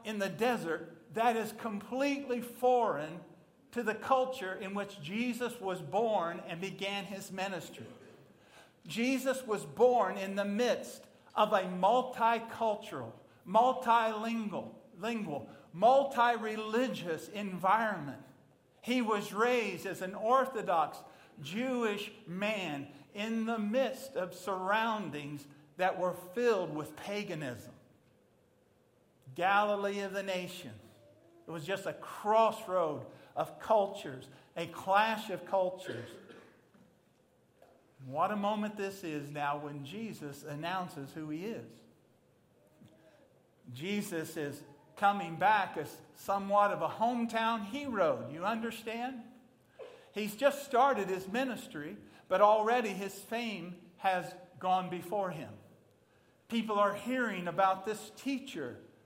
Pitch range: 170-230 Hz